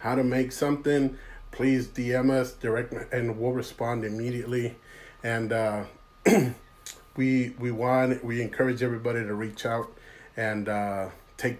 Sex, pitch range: male, 110-120 Hz